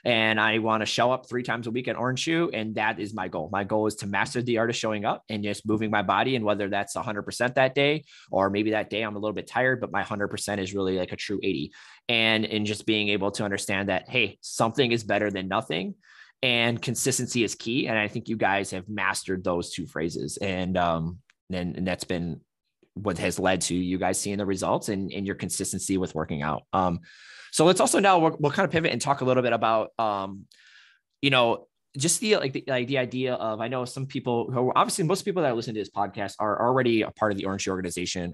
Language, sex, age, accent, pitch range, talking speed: English, male, 20-39, American, 100-130 Hz, 250 wpm